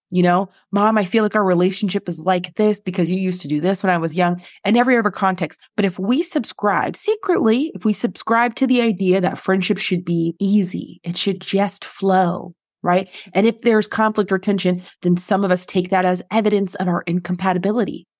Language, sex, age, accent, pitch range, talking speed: English, female, 30-49, American, 180-225 Hz, 210 wpm